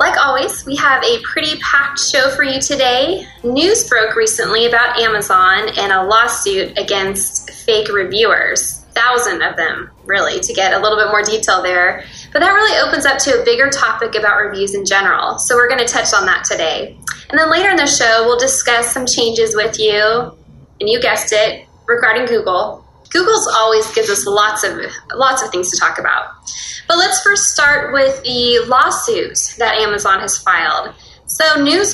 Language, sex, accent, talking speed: English, female, American, 185 wpm